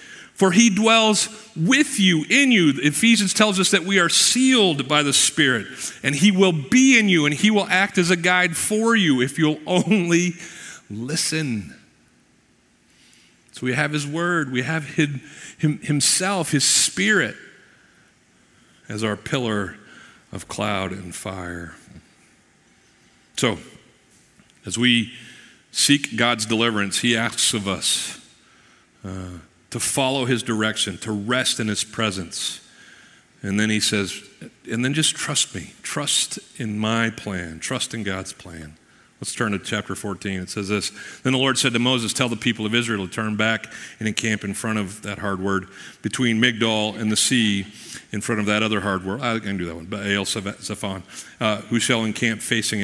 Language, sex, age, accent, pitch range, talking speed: English, male, 50-69, American, 105-155 Hz, 165 wpm